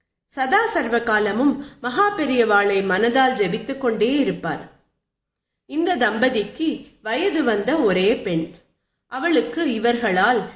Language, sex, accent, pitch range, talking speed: Tamil, female, native, 200-290 Hz, 95 wpm